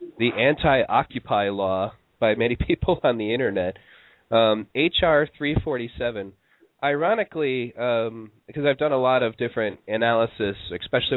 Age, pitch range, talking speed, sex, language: 30-49, 110-140 Hz, 125 wpm, male, English